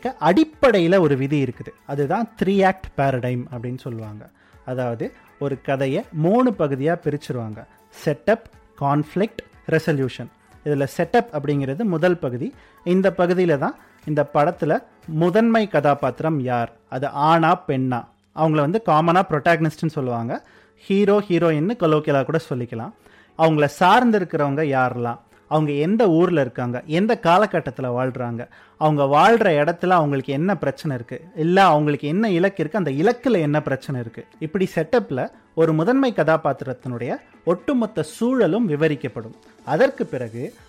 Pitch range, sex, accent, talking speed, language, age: 135-190 Hz, male, native, 95 wpm, Tamil, 30-49